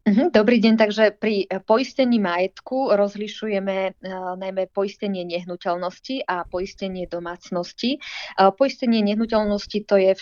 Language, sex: Slovak, female